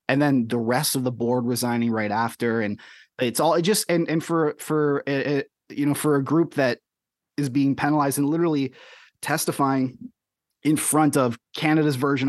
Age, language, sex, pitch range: 30-49, English, male, 115-145 Hz